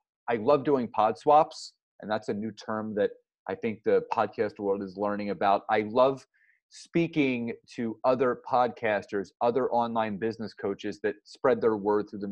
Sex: male